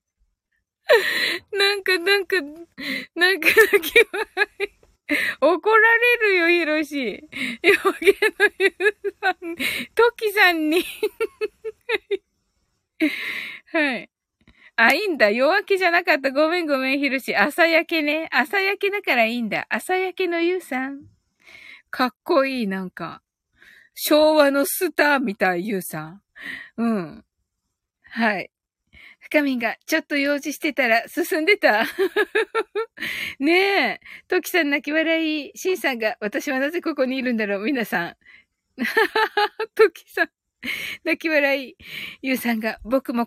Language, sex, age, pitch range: Japanese, female, 20-39, 270-395 Hz